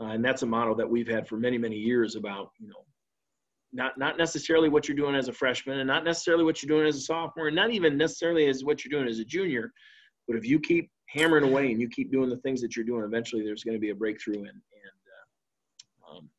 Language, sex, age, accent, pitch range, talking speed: English, male, 40-59, American, 110-135 Hz, 255 wpm